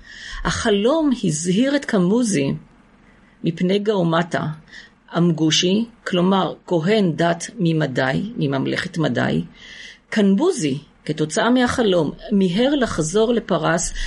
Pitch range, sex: 170-230 Hz, female